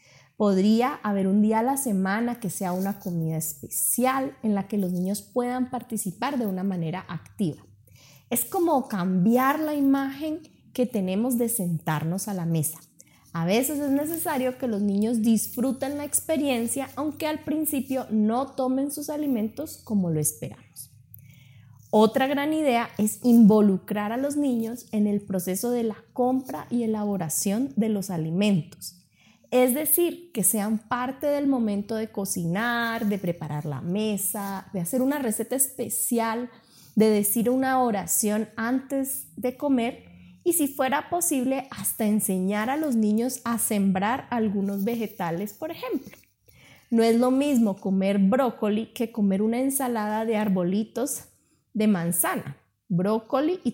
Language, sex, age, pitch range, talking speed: Spanish, female, 20-39, 190-255 Hz, 145 wpm